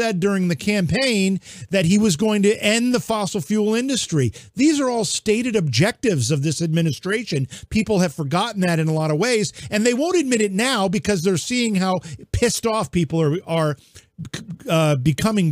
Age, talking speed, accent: 50-69, 185 wpm, American